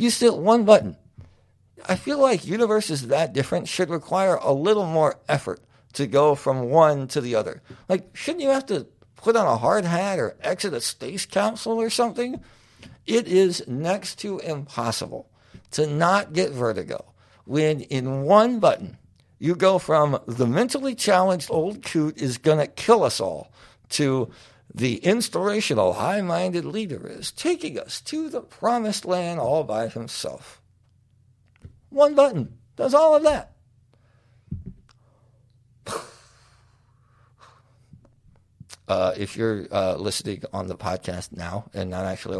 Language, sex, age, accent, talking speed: English, male, 60-79, American, 140 wpm